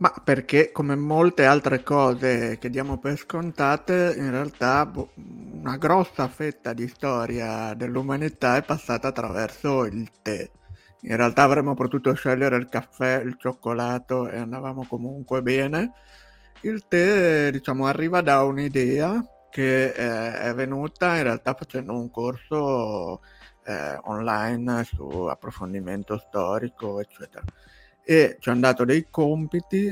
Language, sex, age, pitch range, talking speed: Italian, male, 60-79, 120-145 Hz, 130 wpm